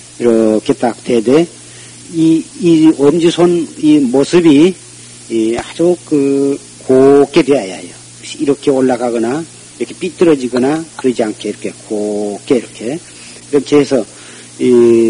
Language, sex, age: Korean, male, 40-59